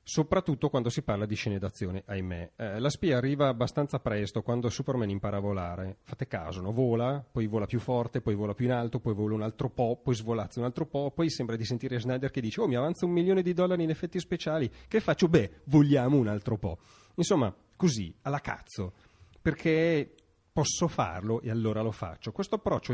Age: 30-49